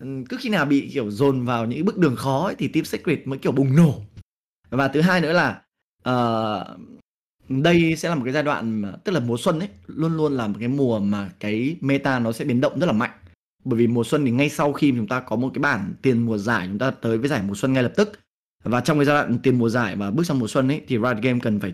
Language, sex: Vietnamese, male